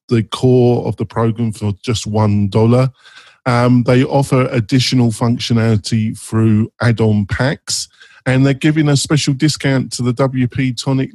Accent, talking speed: British, 140 wpm